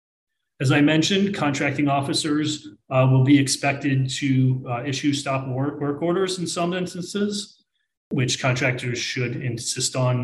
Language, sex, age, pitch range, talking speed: English, male, 30-49, 125-150 Hz, 140 wpm